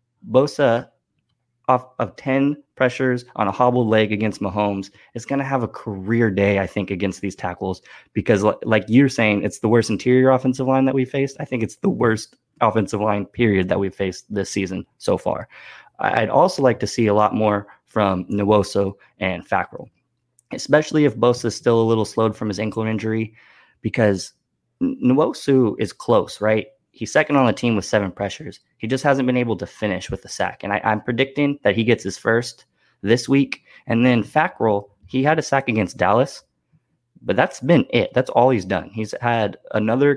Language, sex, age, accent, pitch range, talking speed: English, male, 20-39, American, 105-130 Hz, 195 wpm